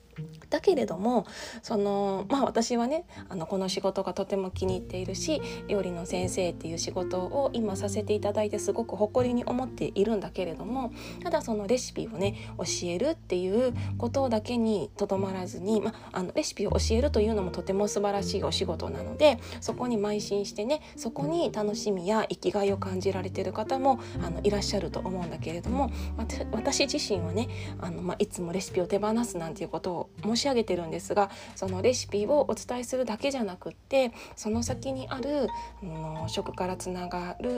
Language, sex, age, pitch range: Japanese, female, 20-39, 170-240 Hz